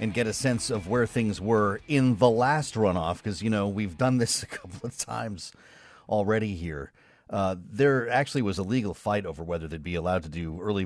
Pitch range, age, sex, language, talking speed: 95-125 Hz, 40-59, male, English, 215 wpm